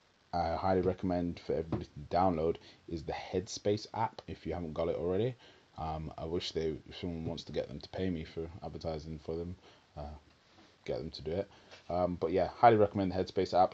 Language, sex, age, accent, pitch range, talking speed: English, male, 20-39, British, 80-95 Hz, 210 wpm